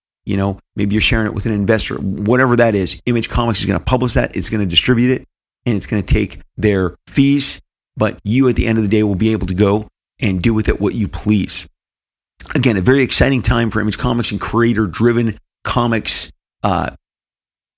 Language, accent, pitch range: English, American, 100-125 Hz